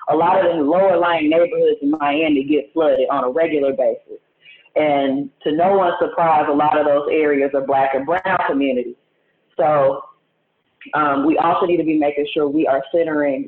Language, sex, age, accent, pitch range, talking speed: English, female, 30-49, American, 140-180 Hz, 185 wpm